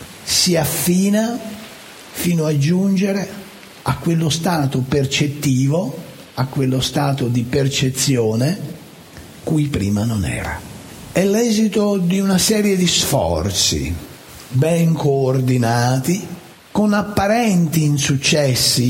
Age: 60-79